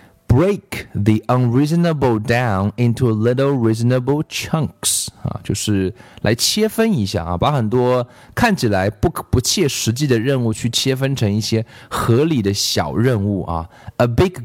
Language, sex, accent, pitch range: Chinese, male, native, 105-140 Hz